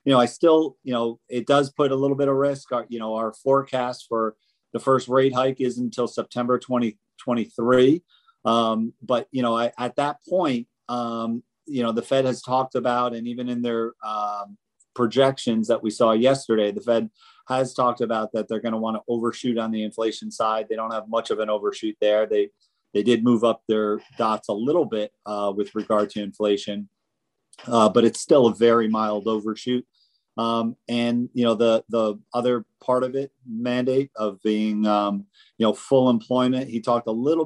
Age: 40-59